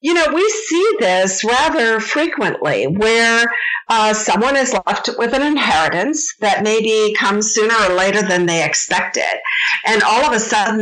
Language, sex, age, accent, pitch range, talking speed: English, female, 50-69, American, 180-250 Hz, 160 wpm